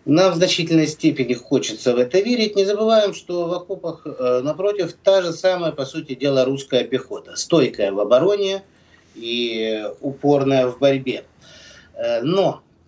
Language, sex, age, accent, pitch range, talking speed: Russian, male, 30-49, native, 110-175 Hz, 140 wpm